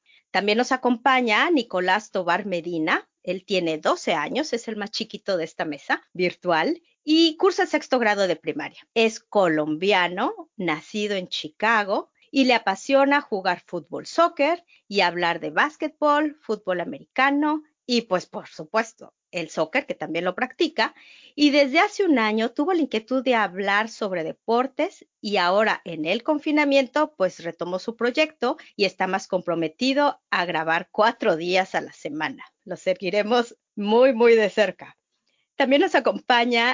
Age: 40-59